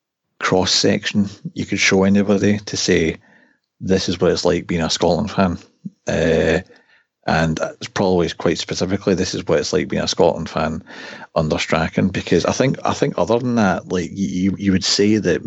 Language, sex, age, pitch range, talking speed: English, male, 40-59, 95-115 Hz, 180 wpm